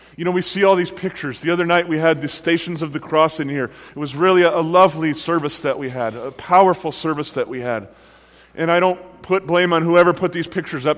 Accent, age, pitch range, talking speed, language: American, 30-49, 155-185 Hz, 250 wpm, English